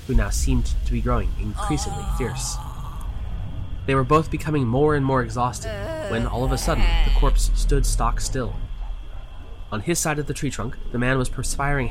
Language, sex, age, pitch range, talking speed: English, male, 20-39, 90-130 Hz, 185 wpm